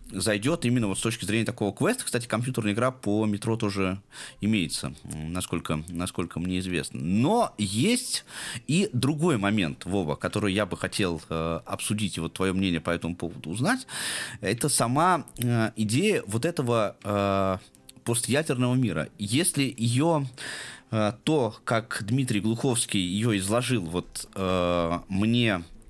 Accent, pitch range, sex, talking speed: native, 95-130 Hz, male, 140 wpm